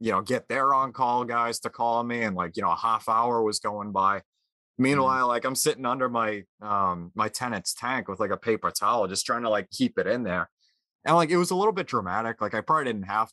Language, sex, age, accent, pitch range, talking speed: English, male, 20-39, American, 105-135 Hz, 250 wpm